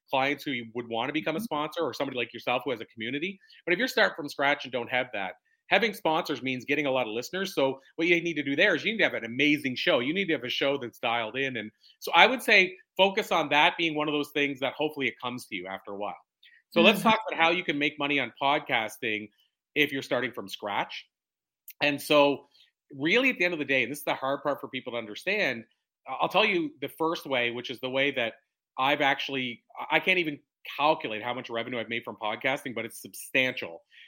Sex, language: male, English